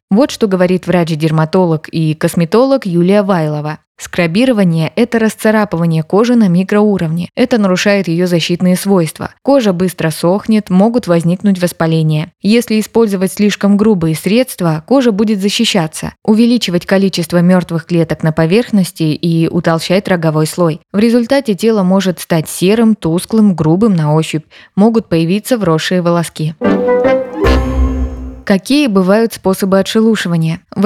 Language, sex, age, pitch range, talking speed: Russian, female, 20-39, 170-220 Hz, 120 wpm